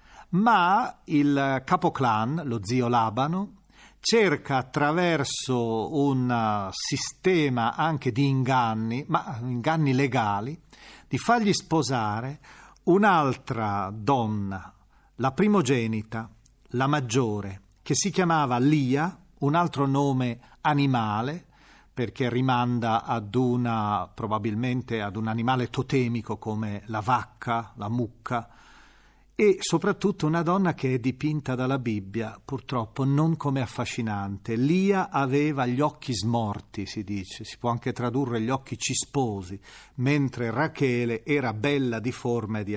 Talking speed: 115 wpm